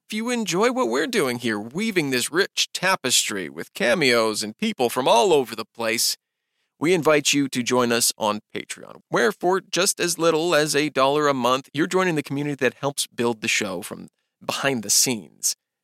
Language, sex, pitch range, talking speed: English, male, 125-180 Hz, 195 wpm